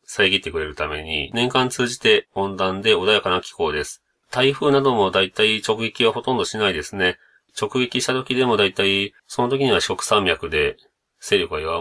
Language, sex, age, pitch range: Japanese, male, 30-49, 100-140 Hz